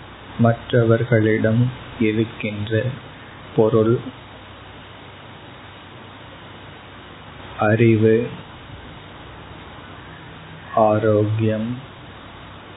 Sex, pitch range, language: male, 105-120 Hz, Tamil